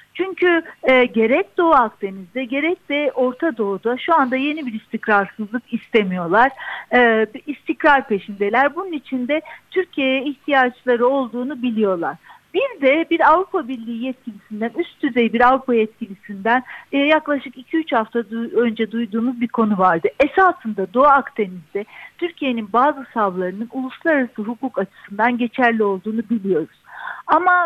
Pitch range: 220-305 Hz